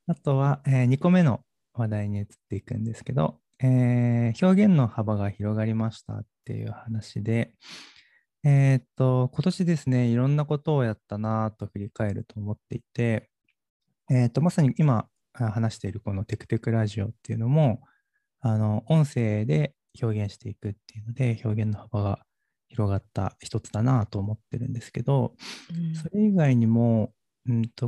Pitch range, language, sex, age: 110-135 Hz, Japanese, male, 20-39